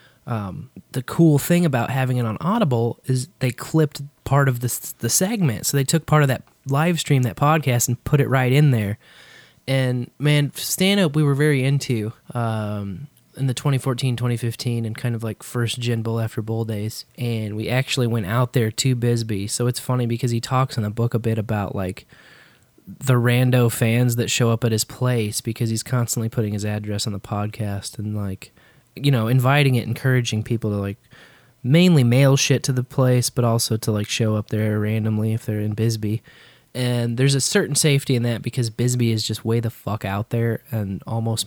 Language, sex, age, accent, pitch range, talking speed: English, male, 20-39, American, 110-130 Hz, 200 wpm